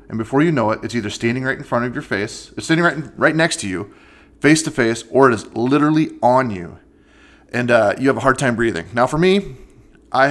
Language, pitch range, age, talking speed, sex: English, 105-130 Hz, 30-49, 240 wpm, male